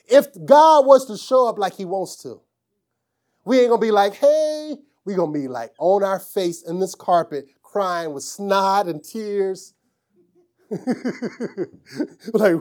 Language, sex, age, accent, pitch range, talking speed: English, male, 30-49, American, 165-215 Hz, 160 wpm